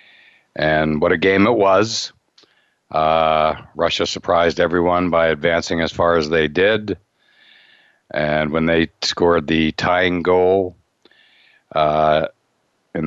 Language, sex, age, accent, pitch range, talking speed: English, male, 60-79, American, 75-95 Hz, 120 wpm